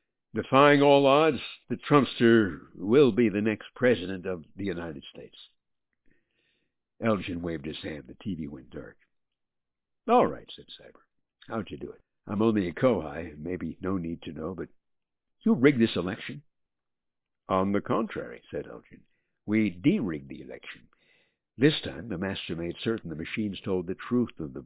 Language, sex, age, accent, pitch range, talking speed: English, male, 60-79, American, 85-115 Hz, 160 wpm